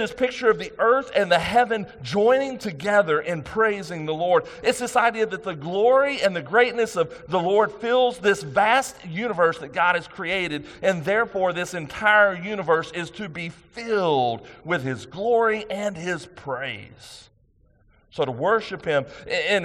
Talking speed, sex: 165 wpm, male